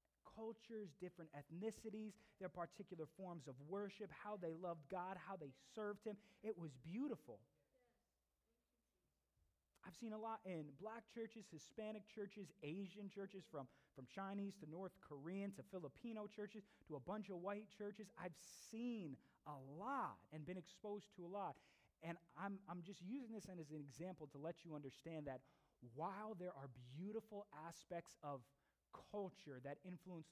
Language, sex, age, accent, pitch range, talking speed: English, male, 30-49, American, 150-205 Hz, 155 wpm